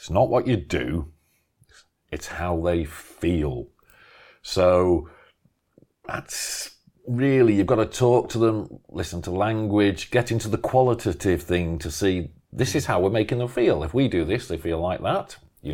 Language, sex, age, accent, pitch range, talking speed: English, male, 40-59, British, 80-110 Hz, 170 wpm